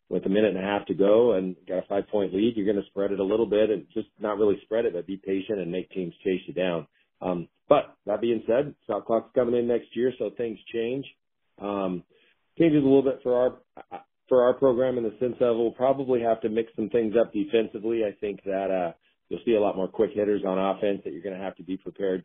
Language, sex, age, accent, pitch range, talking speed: English, male, 40-59, American, 90-105 Hz, 255 wpm